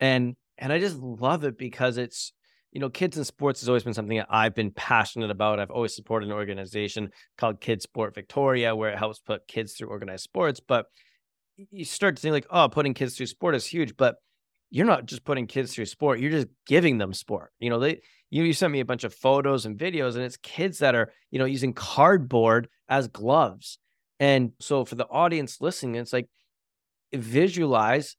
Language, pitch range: English, 115-145 Hz